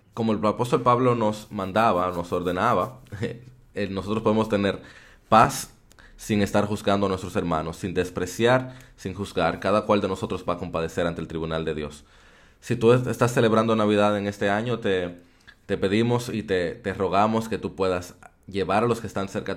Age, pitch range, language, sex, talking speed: 20-39, 90-110 Hz, Spanish, male, 180 wpm